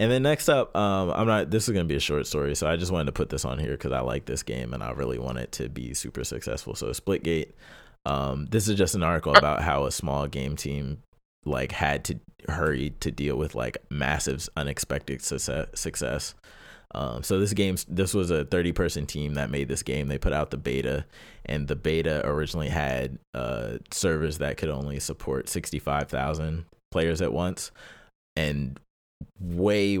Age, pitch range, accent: 20-39, 70-80 Hz, American